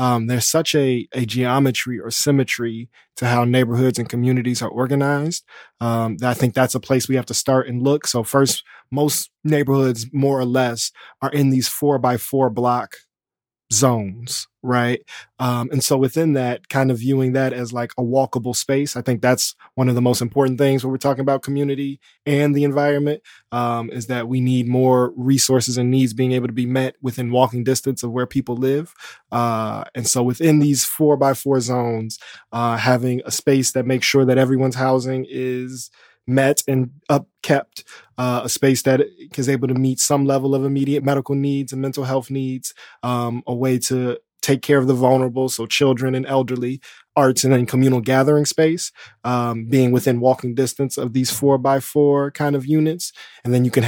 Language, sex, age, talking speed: English, male, 20-39, 195 wpm